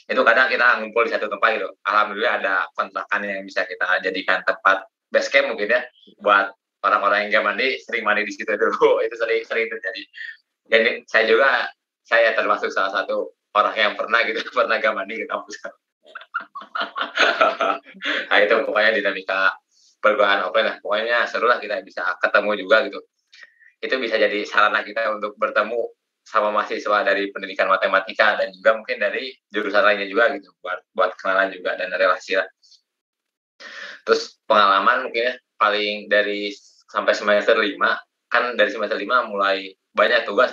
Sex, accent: male, native